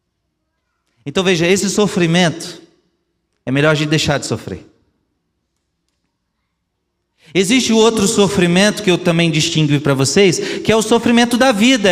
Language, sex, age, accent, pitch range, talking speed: Portuguese, male, 40-59, Brazilian, 115-185 Hz, 130 wpm